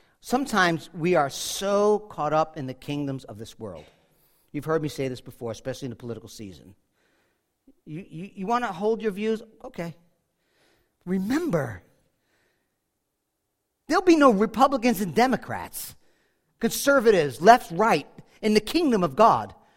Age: 50-69